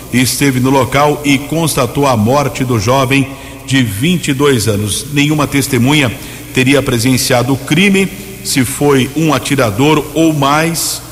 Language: Portuguese